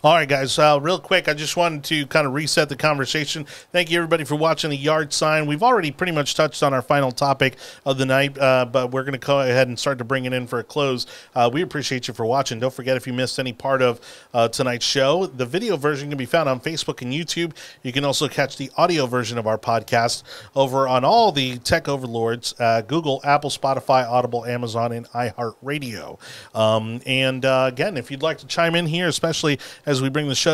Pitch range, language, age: 120-150 Hz, English, 30-49